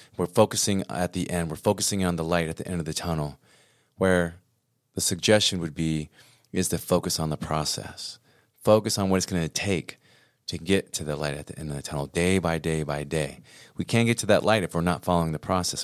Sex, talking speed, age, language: male, 235 wpm, 30-49, English